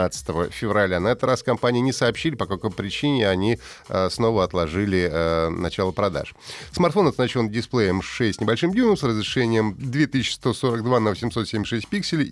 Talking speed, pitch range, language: 135 wpm, 105-140 Hz, Russian